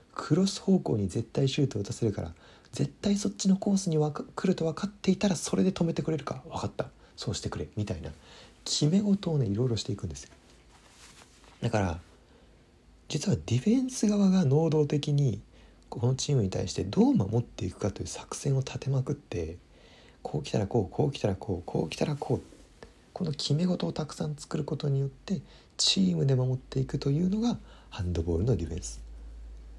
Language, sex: Japanese, male